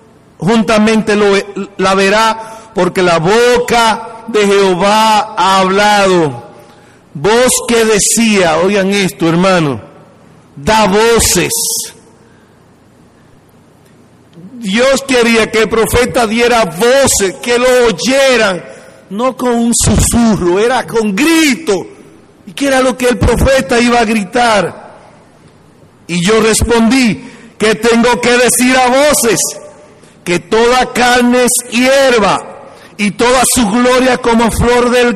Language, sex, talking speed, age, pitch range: Spanish, male, 115 wpm, 50-69, 215-245 Hz